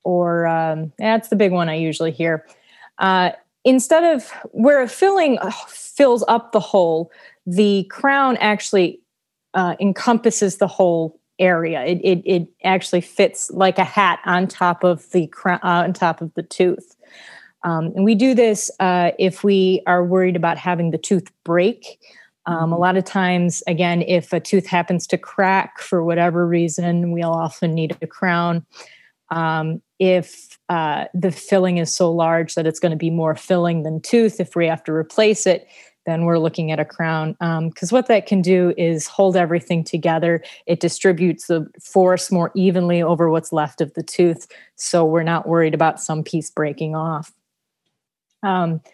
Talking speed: 175 wpm